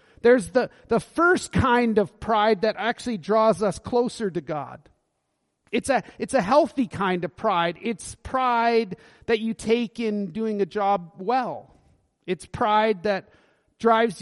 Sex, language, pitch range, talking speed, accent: male, English, 185-235 Hz, 150 wpm, American